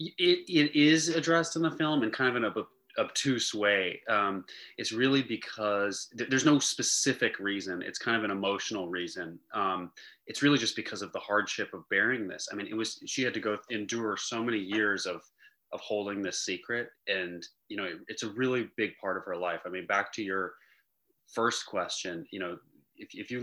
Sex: male